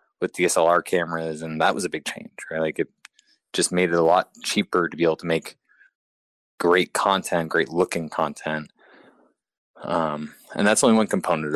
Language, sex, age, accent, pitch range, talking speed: English, male, 20-39, American, 80-100 Hz, 170 wpm